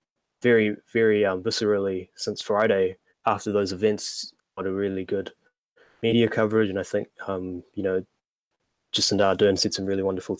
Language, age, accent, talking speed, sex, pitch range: English, 20-39, Australian, 155 wpm, male, 95-105 Hz